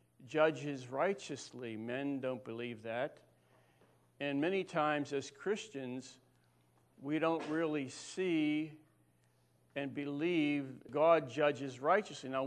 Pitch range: 120-150 Hz